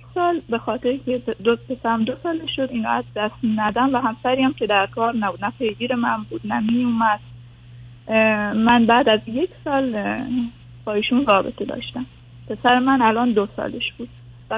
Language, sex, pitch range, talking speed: Persian, female, 200-250 Hz, 165 wpm